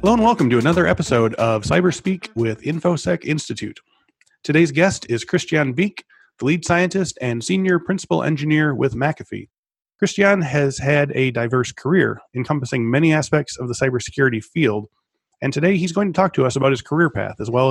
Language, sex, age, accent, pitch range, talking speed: English, male, 30-49, American, 125-155 Hz, 175 wpm